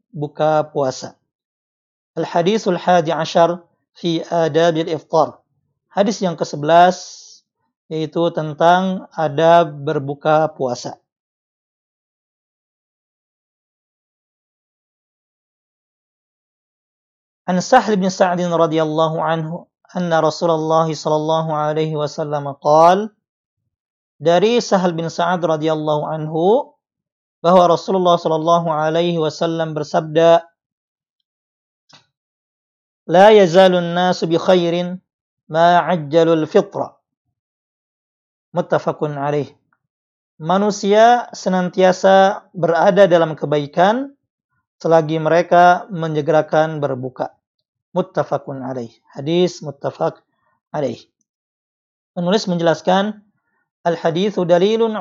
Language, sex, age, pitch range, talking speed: Indonesian, male, 40-59, 155-180 Hz, 75 wpm